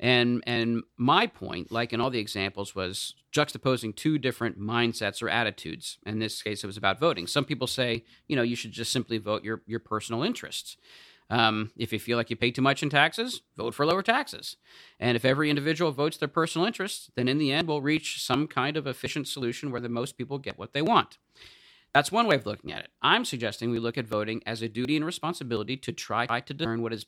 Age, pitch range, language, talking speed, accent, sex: 40-59, 115-145 Hz, English, 230 wpm, American, male